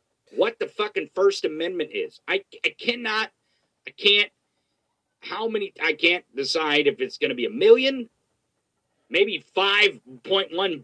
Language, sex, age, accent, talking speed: English, male, 40-59, American, 135 wpm